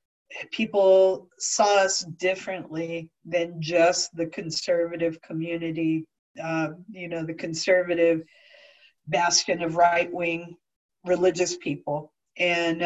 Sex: female